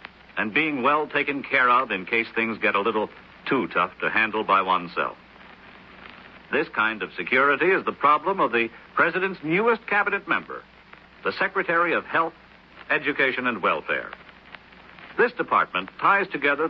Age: 70-89